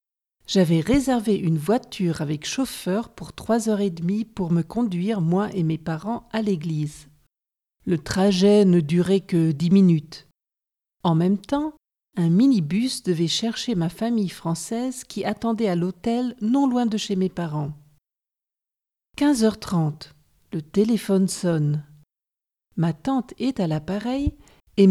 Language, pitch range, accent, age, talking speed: French, 165-220 Hz, French, 50-69, 135 wpm